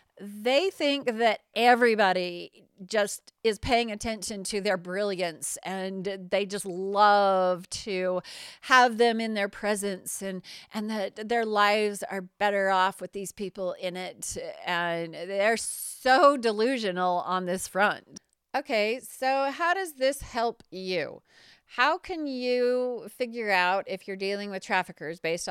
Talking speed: 140 wpm